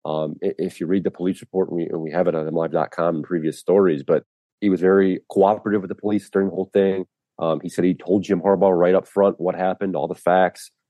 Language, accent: English, American